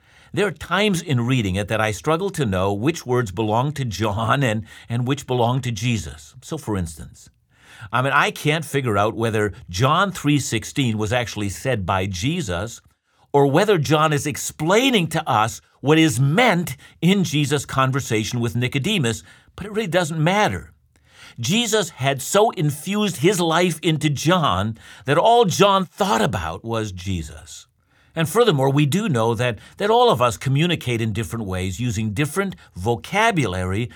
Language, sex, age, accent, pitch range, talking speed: English, male, 50-69, American, 110-160 Hz, 160 wpm